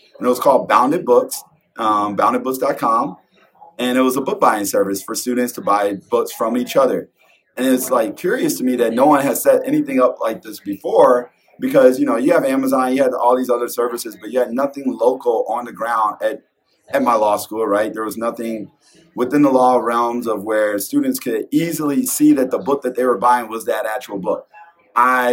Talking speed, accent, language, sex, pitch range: 215 wpm, American, English, male, 120-195 Hz